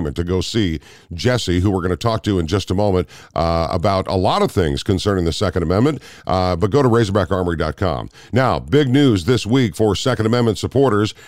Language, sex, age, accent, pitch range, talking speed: English, male, 50-69, American, 95-120 Hz, 200 wpm